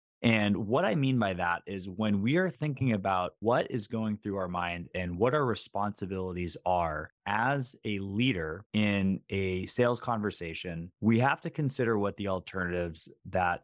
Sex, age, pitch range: male, 20-39, 95-120 Hz